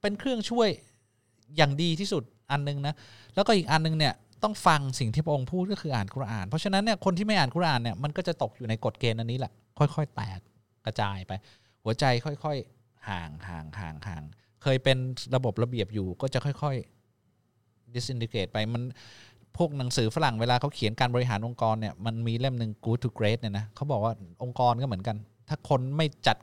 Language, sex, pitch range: Thai, male, 110-145 Hz